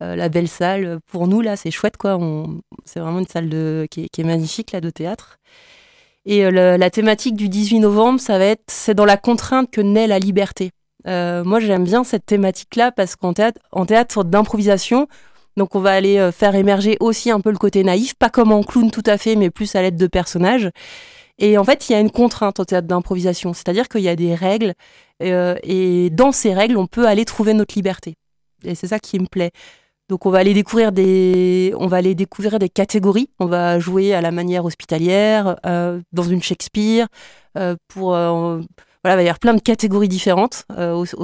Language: French